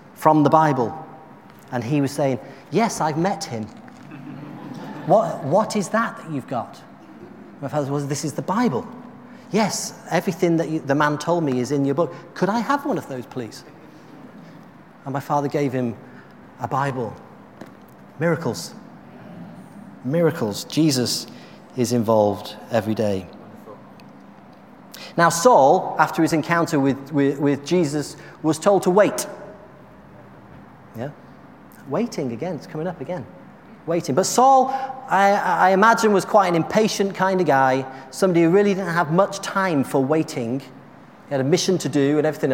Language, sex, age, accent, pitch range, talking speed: English, male, 40-59, British, 130-185 Hz, 150 wpm